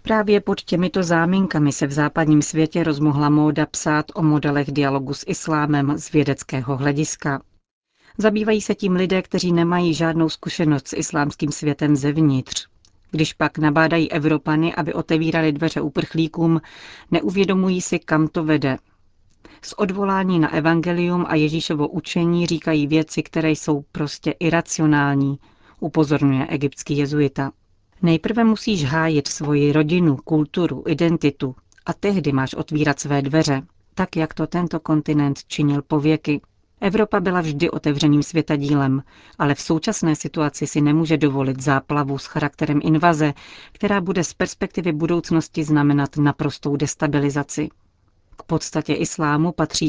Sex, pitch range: female, 145-165 Hz